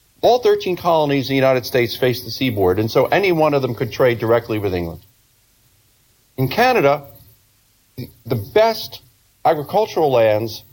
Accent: American